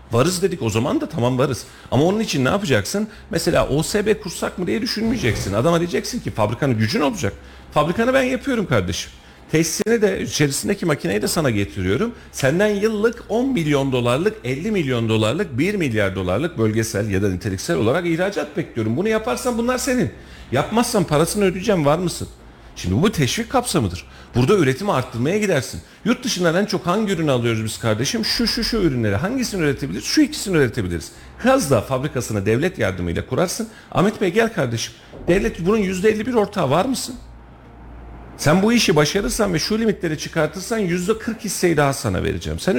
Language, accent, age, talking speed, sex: Turkish, native, 40-59, 165 wpm, male